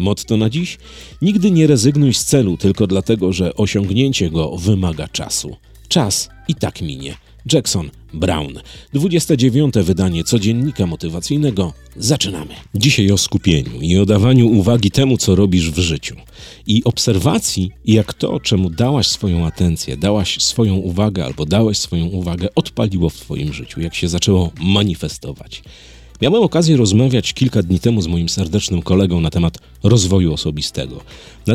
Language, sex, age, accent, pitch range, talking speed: Polish, male, 40-59, native, 85-115 Hz, 145 wpm